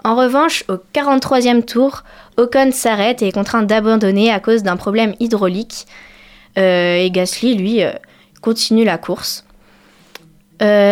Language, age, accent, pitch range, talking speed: French, 20-39, French, 185-230 Hz, 135 wpm